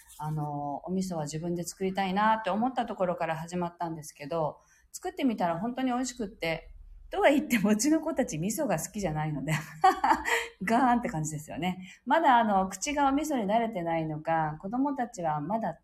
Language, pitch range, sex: Japanese, 155-215 Hz, female